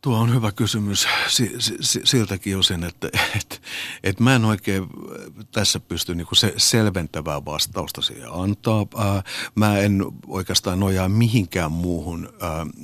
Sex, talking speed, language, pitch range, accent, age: male, 125 wpm, Finnish, 85-105 Hz, native, 60-79